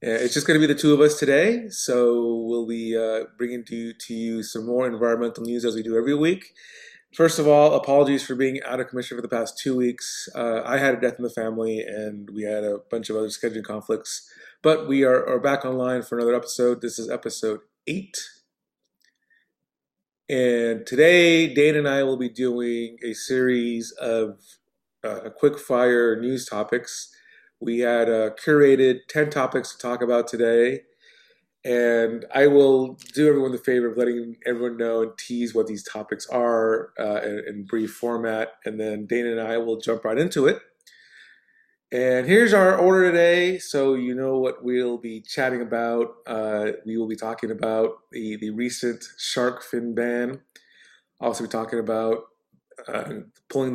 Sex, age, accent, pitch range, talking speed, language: male, 30-49, American, 115-135 Hz, 180 wpm, English